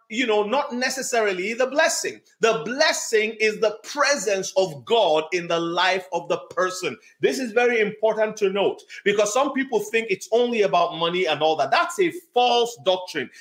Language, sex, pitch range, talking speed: English, male, 185-255 Hz, 180 wpm